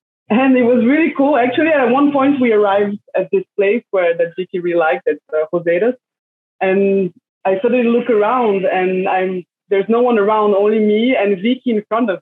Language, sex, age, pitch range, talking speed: English, female, 20-39, 180-245 Hz, 195 wpm